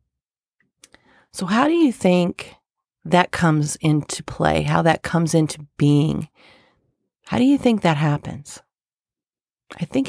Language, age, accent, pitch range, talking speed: English, 40-59, American, 145-175 Hz, 130 wpm